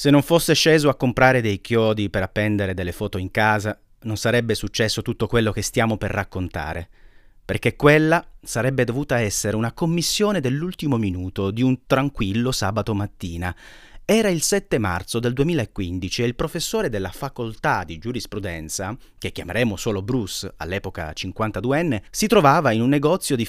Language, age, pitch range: Italian, 30-49, 100-150 Hz